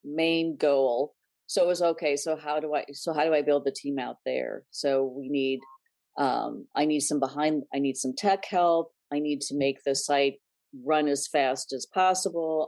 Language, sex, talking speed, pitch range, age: English, female, 205 wpm, 140-170 Hz, 40-59